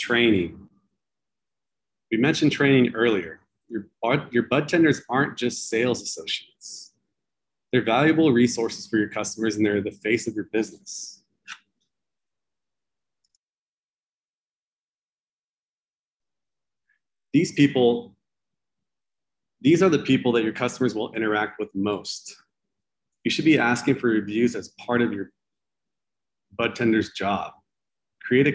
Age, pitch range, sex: 30-49, 105-135 Hz, male